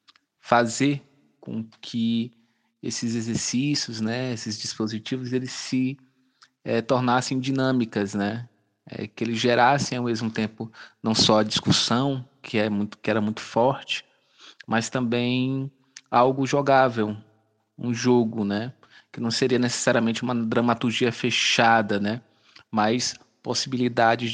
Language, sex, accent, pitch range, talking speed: Portuguese, male, Brazilian, 110-130 Hz, 120 wpm